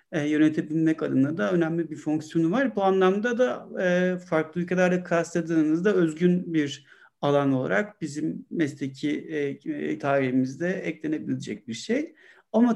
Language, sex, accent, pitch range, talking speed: Turkish, male, native, 160-210 Hz, 115 wpm